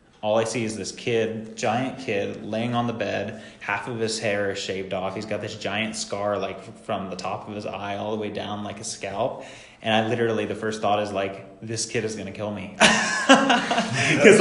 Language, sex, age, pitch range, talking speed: English, male, 20-39, 100-120 Hz, 220 wpm